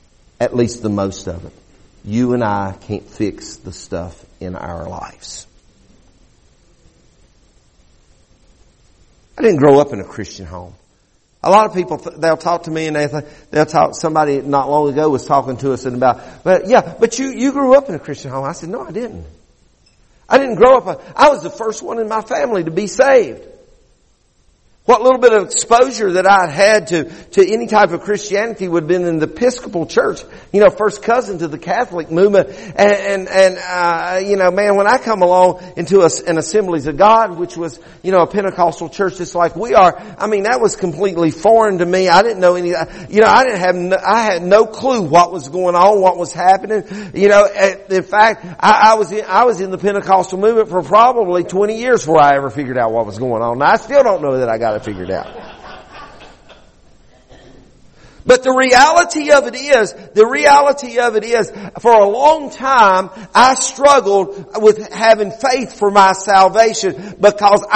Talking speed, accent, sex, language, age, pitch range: 200 wpm, American, male, English, 50-69, 165-220 Hz